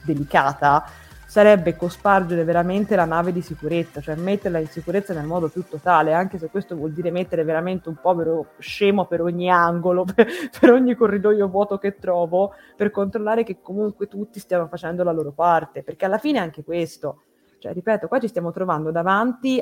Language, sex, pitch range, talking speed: Italian, female, 170-205 Hz, 180 wpm